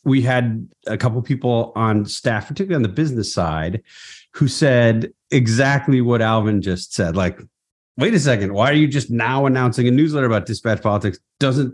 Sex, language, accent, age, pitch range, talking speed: male, English, American, 40-59, 100-125 Hz, 185 wpm